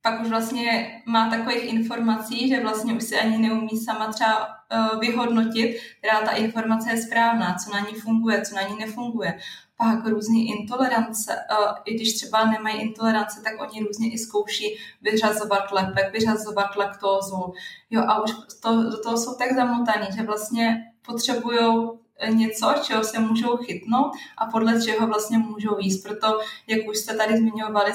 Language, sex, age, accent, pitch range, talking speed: Czech, female, 20-39, native, 205-225 Hz, 160 wpm